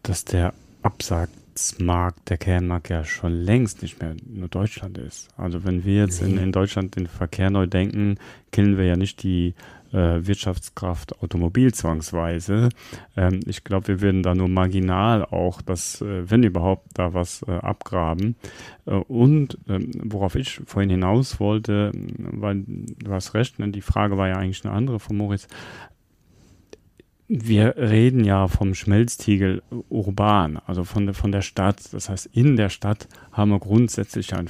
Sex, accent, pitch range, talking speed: male, German, 90-110 Hz, 160 wpm